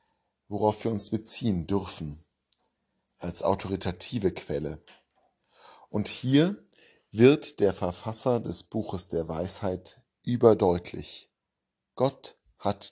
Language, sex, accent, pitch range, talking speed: German, male, German, 90-115 Hz, 95 wpm